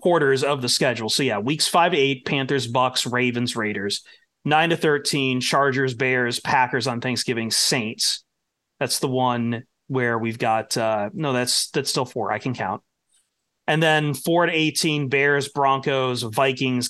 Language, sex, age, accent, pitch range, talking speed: English, male, 30-49, American, 130-195 Hz, 165 wpm